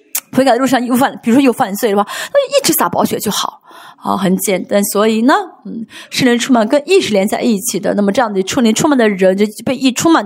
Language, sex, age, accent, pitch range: Chinese, female, 20-39, native, 220-320 Hz